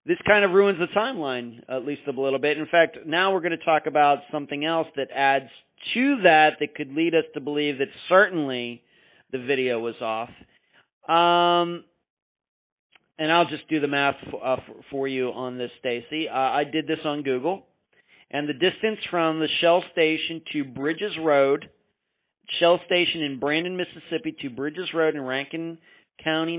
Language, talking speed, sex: English, 175 wpm, male